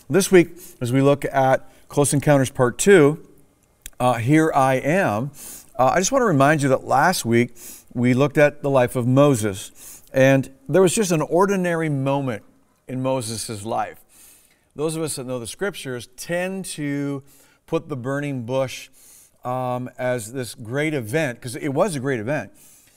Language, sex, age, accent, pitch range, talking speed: English, male, 50-69, American, 120-150 Hz, 165 wpm